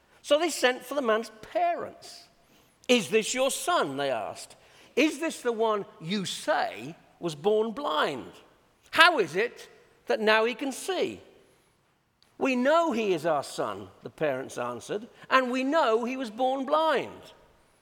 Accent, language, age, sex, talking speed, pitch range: British, English, 50-69, male, 155 wpm, 220-320 Hz